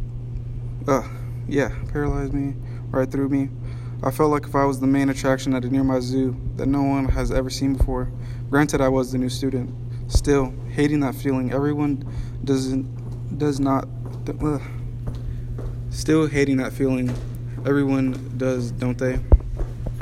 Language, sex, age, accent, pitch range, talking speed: English, male, 20-39, American, 120-135 Hz, 150 wpm